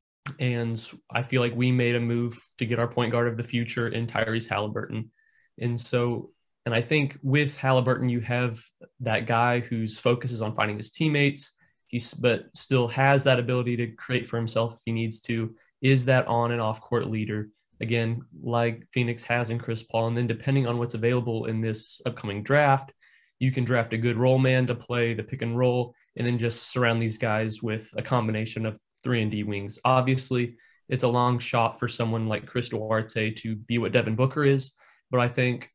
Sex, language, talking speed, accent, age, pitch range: male, English, 200 wpm, American, 20-39, 115-130 Hz